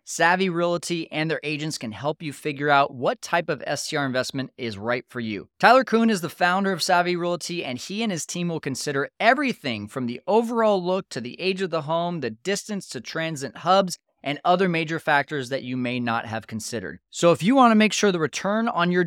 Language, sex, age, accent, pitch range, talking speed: English, male, 30-49, American, 140-190 Hz, 225 wpm